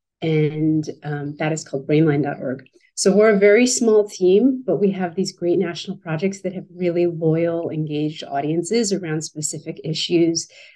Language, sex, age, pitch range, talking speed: English, female, 30-49, 160-200 Hz, 155 wpm